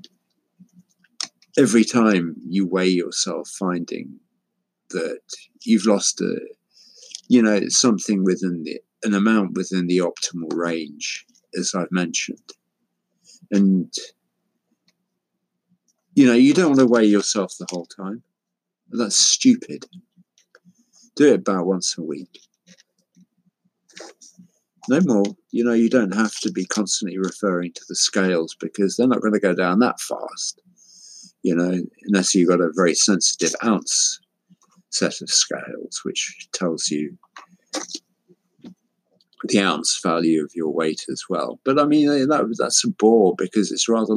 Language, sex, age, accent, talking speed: English, male, 50-69, British, 135 wpm